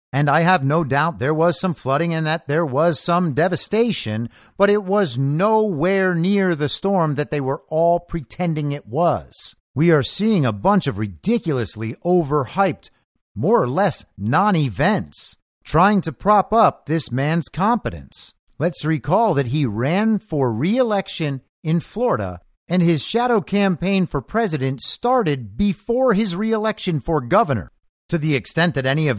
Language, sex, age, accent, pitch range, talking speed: English, male, 50-69, American, 135-185 Hz, 155 wpm